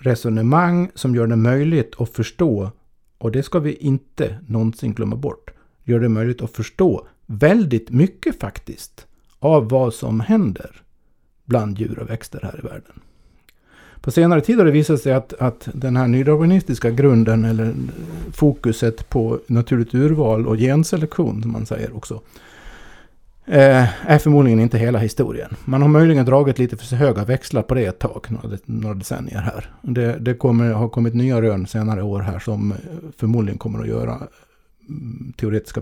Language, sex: Swedish, male